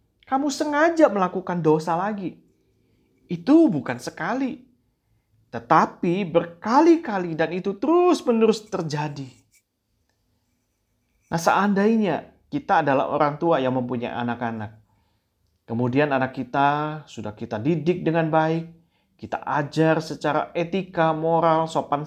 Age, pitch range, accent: 30-49, 125-180 Hz, native